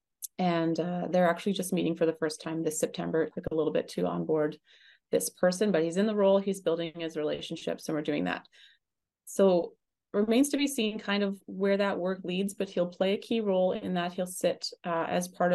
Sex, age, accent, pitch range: female, 30-49, American, 160-195 Hz